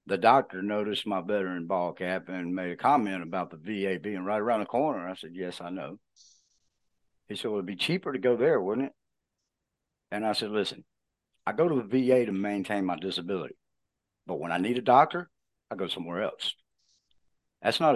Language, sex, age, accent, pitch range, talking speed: English, male, 60-79, American, 100-130 Hz, 200 wpm